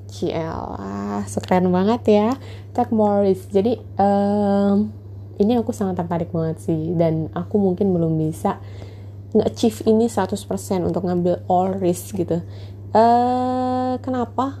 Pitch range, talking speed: 155-210 Hz, 125 wpm